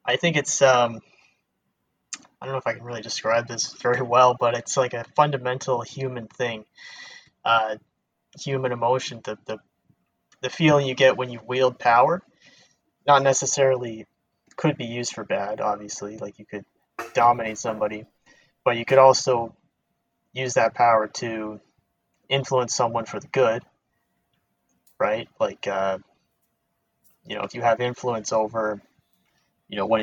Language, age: English, 20-39